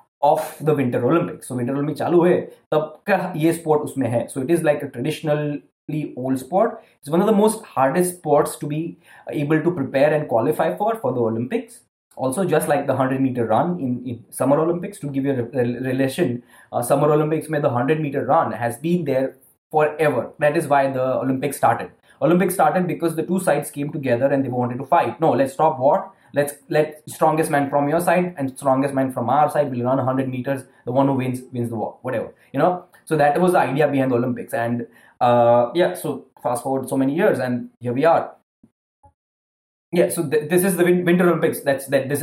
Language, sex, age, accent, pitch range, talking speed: English, male, 20-39, Indian, 125-155 Hz, 215 wpm